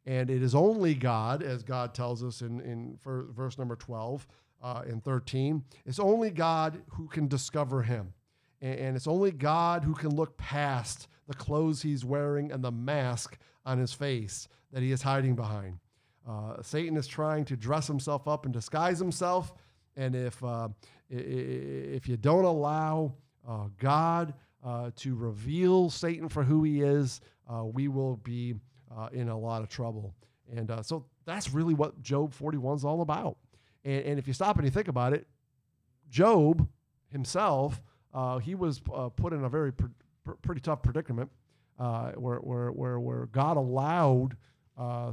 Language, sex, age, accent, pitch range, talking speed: English, male, 50-69, American, 120-145 Hz, 170 wpm